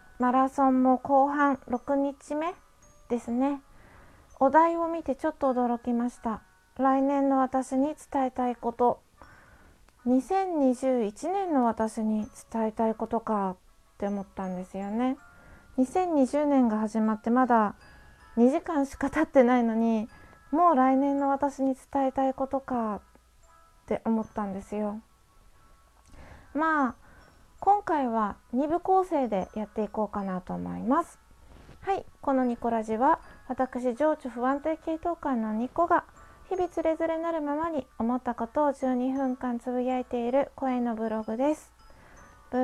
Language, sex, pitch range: Japanese, female, 225-280 Hz